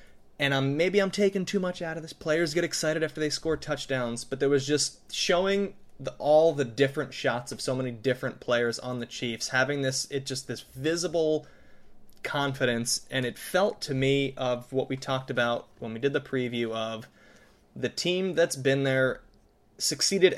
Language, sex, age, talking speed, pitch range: English, male, 20-39, 190 wpm, 125-145 Hz